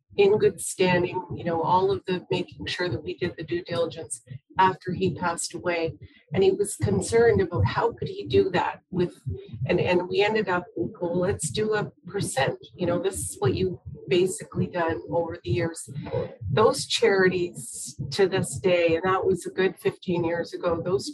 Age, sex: 40-59, female